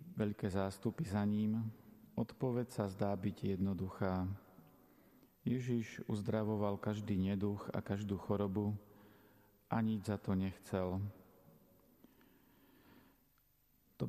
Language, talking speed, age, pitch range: Slovak, 95 wpm, 40-59, 100-110 Hz